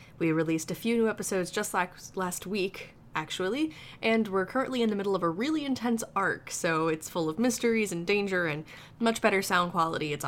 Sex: female